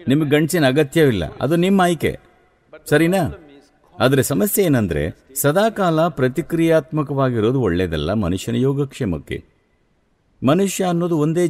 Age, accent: 60-79, Indian